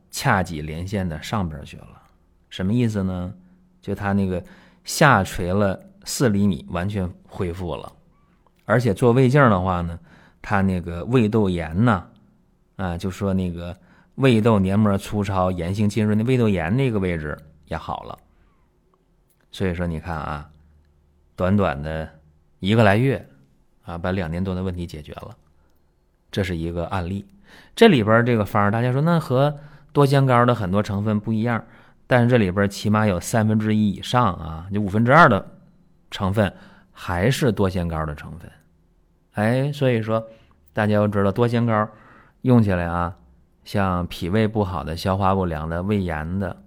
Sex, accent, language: male, native, Chinese